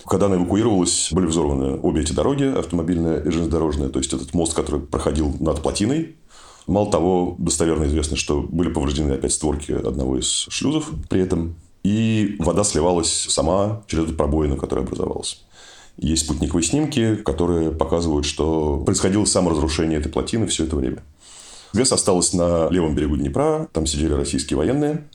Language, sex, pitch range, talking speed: Russian, male, 75-95 Hz, 155 wpm